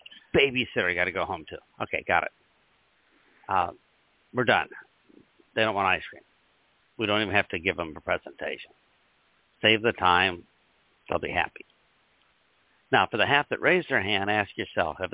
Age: 60-79